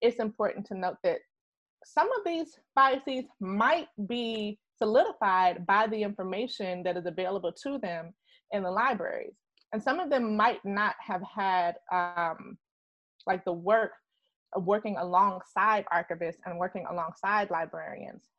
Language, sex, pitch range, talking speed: English, female, 175-215 Hz, 145 wpm